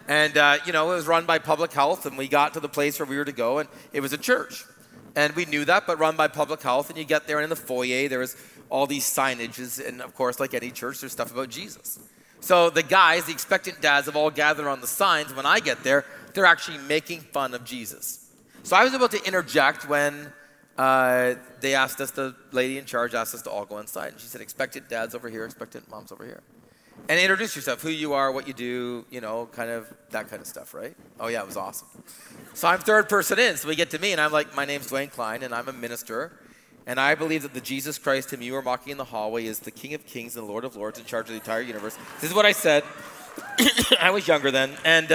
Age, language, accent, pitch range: 30-49, English, American, 130-170 Hz